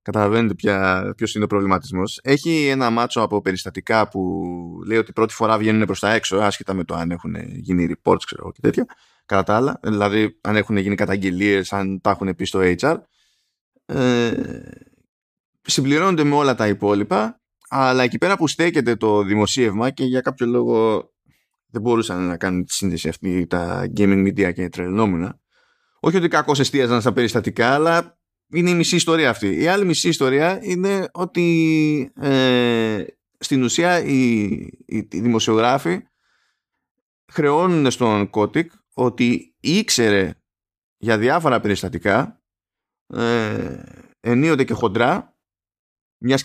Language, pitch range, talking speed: Greek, 100-135 Hz, 140 wpm